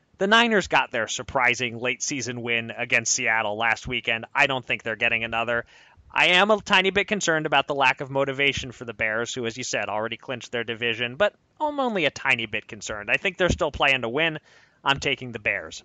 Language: English